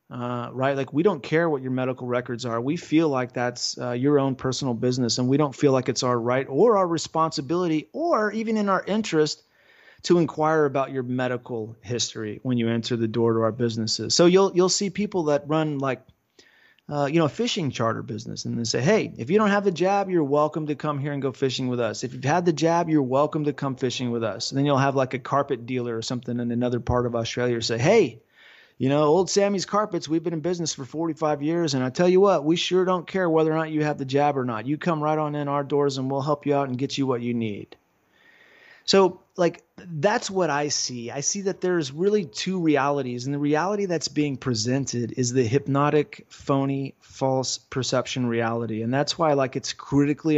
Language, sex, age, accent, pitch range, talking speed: English, male, 30-49, American, 125-165 Hz, 230 wpm